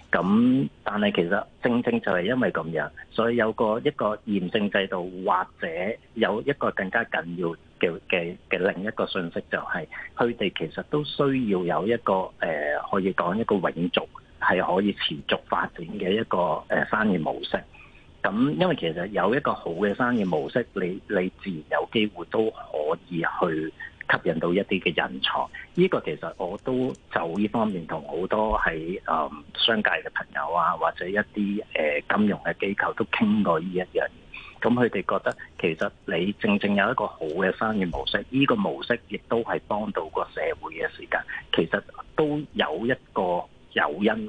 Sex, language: male, Chinese